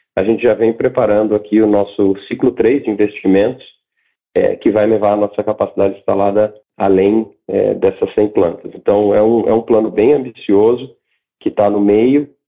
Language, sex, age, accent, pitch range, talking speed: Portuguese, male, 40-59, Brazilian, 100-110 Hz, 180 wpm